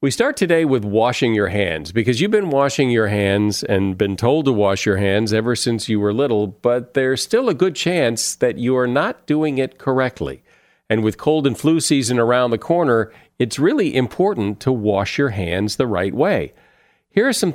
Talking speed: 205 wpm